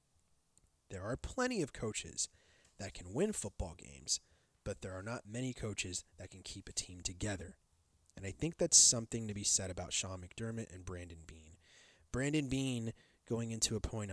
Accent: American